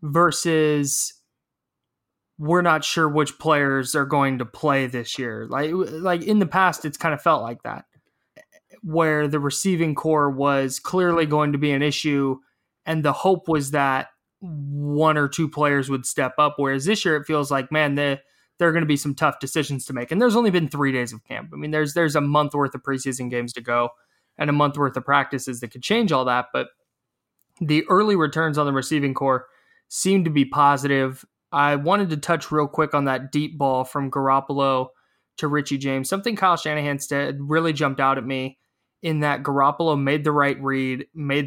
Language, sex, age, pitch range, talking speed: English, male, 20-39, 135-155 Hz, 200 wpm